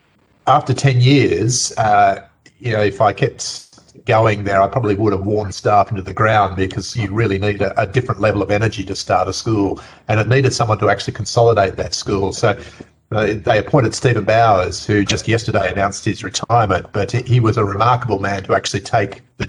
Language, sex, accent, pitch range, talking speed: English, male, Australian, 105-125 Hz, 200 wpm